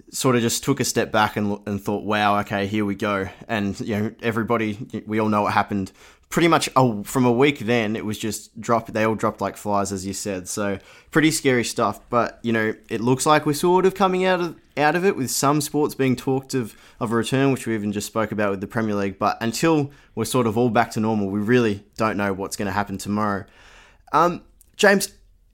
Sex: male